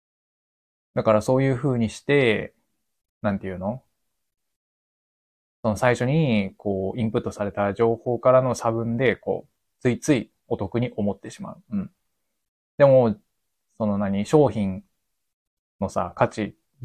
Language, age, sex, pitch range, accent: Japanese, 20-39, male, 100-125 Hz, native